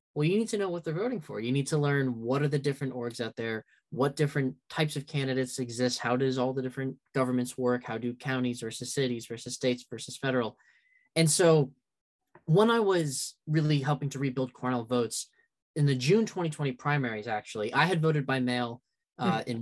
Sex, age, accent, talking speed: male, 10-29, American, 200 wpm